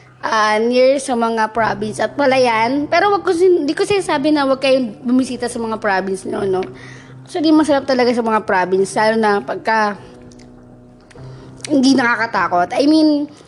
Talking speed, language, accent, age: 175 wpm, Filipino, native, 20-39